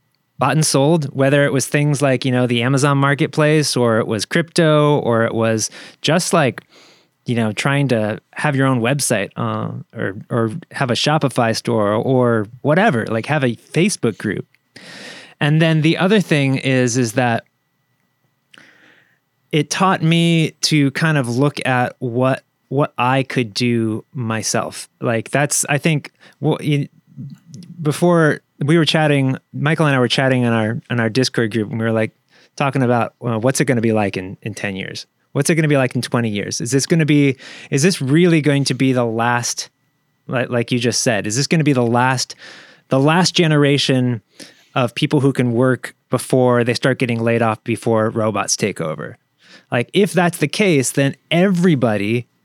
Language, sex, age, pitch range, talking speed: English, male, 20-39, 120-155 Hz, 185 wpm